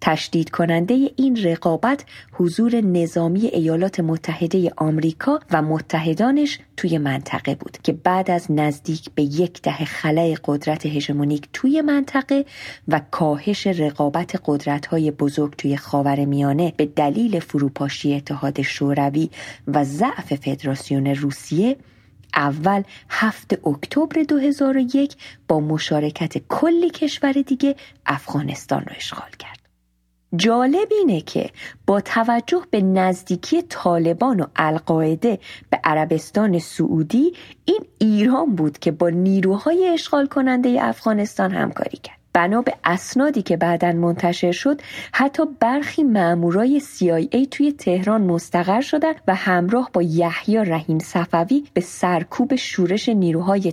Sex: female